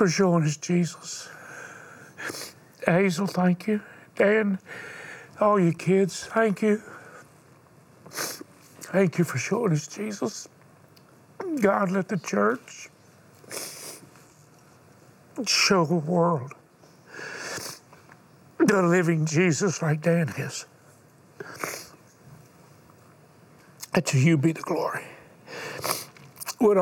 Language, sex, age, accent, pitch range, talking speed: English, male, 60-79, American, 155-195 Hz, 85 wpm